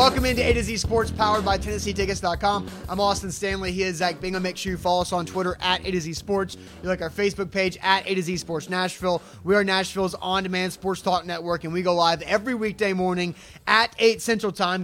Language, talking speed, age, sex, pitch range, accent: English, 230 wpm, 30-49, male, 180-220 Hz, American